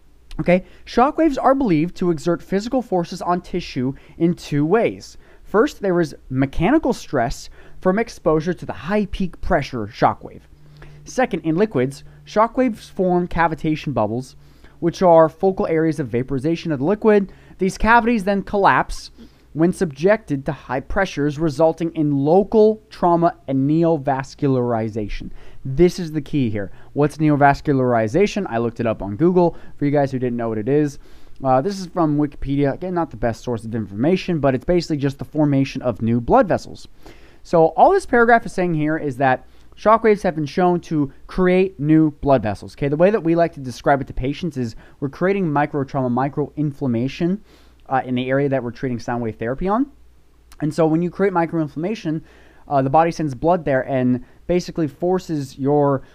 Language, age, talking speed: English, 20-39, 175 wpm